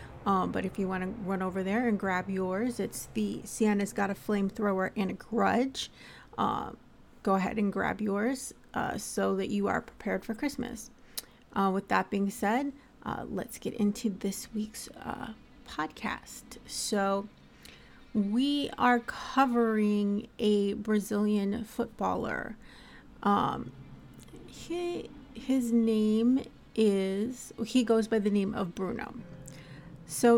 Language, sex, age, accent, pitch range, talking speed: English, female, 30-49, American, 200-245 Hz, 135 wpm